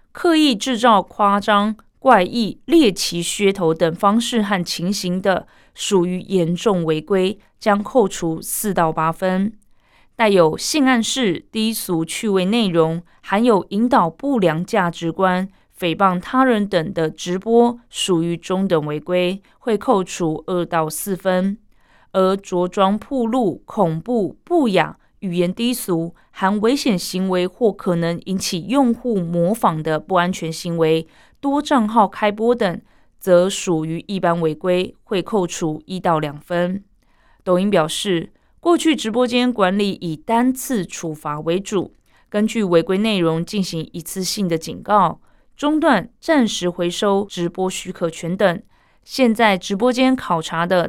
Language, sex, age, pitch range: Chinese, female, 20-39, 175-225 Hz